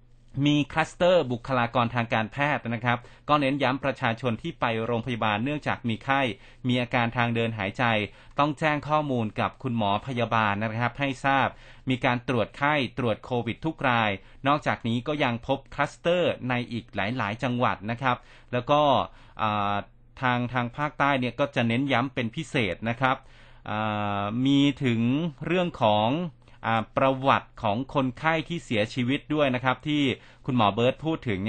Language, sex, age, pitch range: Thai, male, 30-49, 115-140 Hz